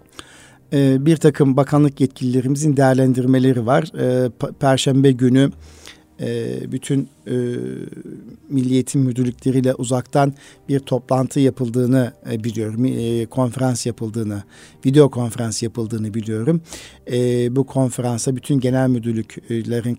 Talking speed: 80 wpm